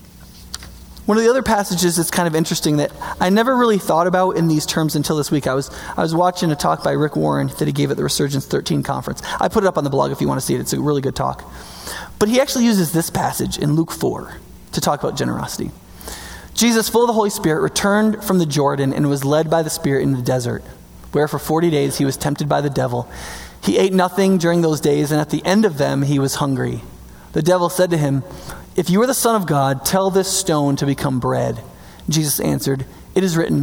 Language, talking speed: English, 245 wpm